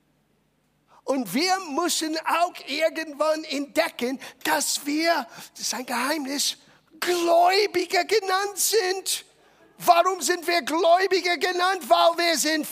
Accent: German